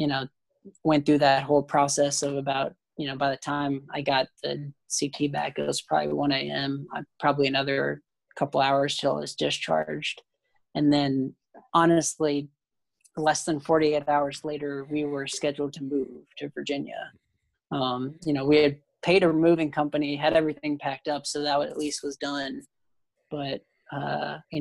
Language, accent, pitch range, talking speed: English, American, 140-155 Hz, 170 wpm